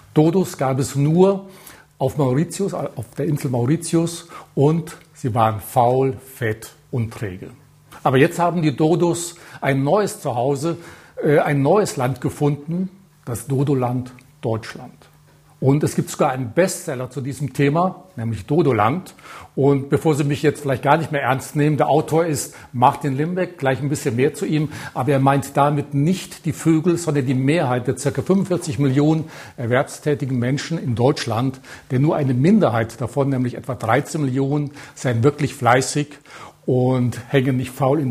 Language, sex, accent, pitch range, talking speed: German, male, German, 125-155 Hz, 160 wpm